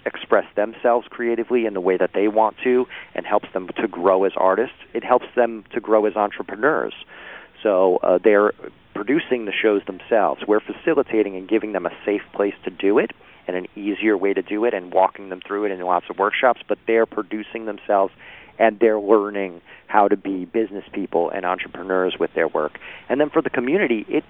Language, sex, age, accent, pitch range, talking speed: English, male, 40-59, American, 105-120 Hz, 200 wpm